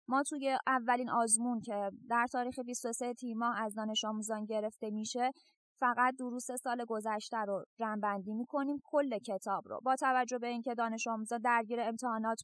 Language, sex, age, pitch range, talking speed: Persian, female, 20-39, 230-260 Hz, 160 wpm